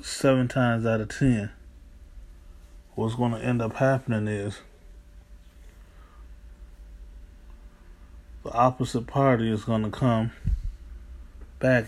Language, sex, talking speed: English, male, 100 wpm